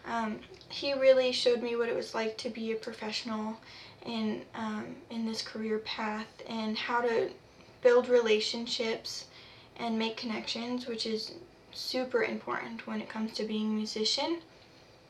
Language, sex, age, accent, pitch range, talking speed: English, female, 10-29, American, 225-255 Hz, 150 wpm